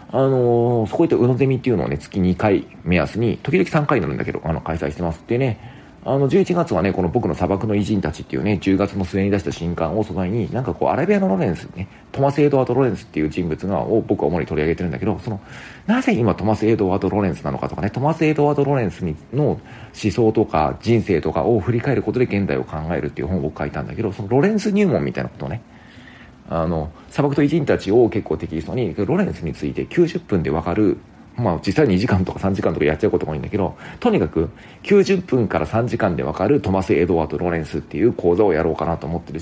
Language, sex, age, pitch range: Japanese, male, 40-59, 85-130 Hz